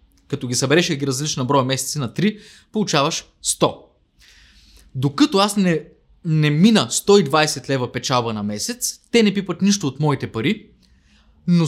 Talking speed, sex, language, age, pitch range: 155 wpm, male, Bulgarian, 20-39, 125-200 Hz